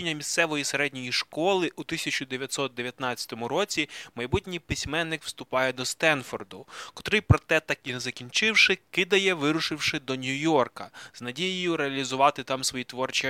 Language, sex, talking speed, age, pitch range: Ukrainian, male, 120 wpm, 20-39, 125-150 Hz